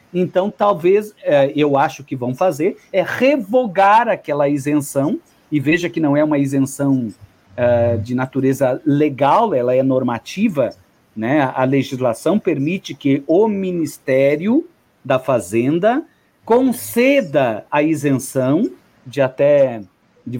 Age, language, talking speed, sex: 50-69, Portuguese, 110 wpm, male